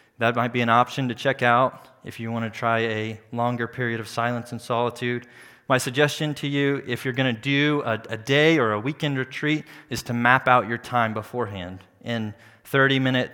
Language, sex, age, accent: English, male, 30-49, American